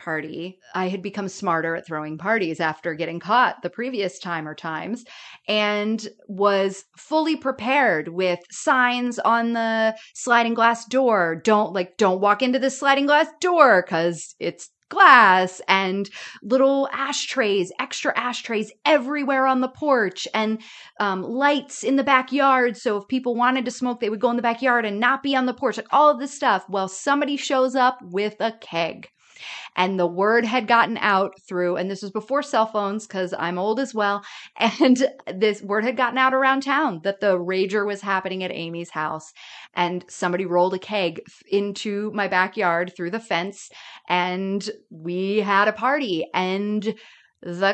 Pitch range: 185-255 Hz